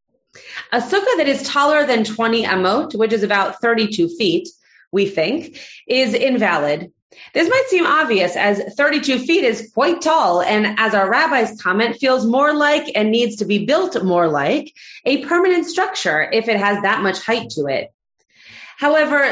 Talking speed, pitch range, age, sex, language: 170 wpm, 205-295 Hz, 30-49, female, English